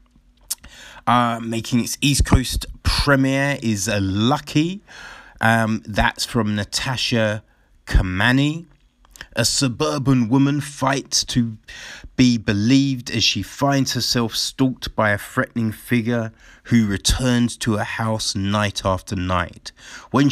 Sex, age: male, 30-49